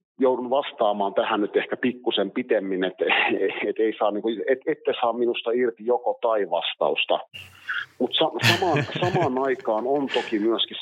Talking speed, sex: 130 wpm, male